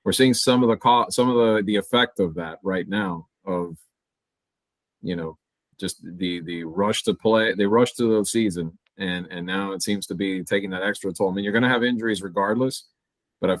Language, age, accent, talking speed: English, 30-49, American, 220 wpm